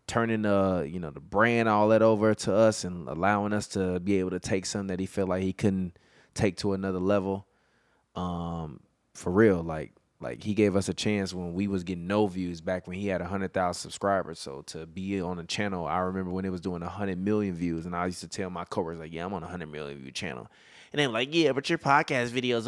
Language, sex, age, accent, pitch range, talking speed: English, male, 20-39, American, 90-110 Hz, 240 wpm